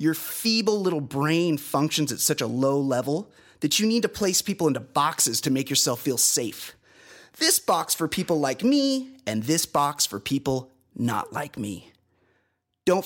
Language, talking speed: English, 175 wpm